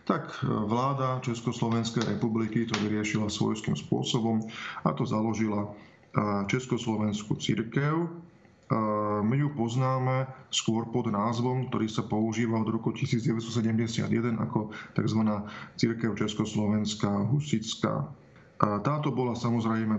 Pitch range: 110-120 Hz